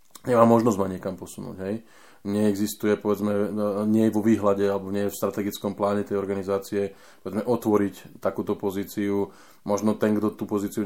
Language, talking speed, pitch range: Slovak, 160 wpm, 100-110 Hz